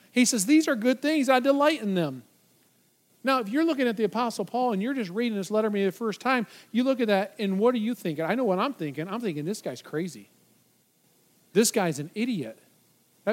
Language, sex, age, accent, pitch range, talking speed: English, male, 40-59, American, 185-250 Hz, 235 wpm